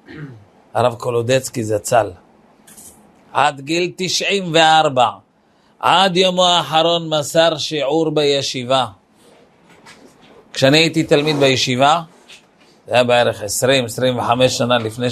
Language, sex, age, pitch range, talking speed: Hebrew, male, 50-69, 130-185 Hz, 85 wpm